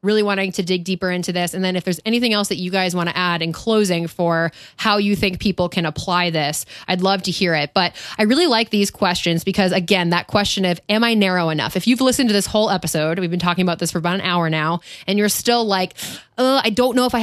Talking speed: 265 wpm